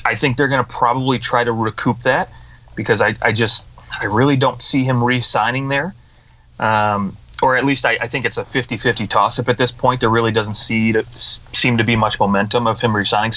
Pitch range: 110-130 Hz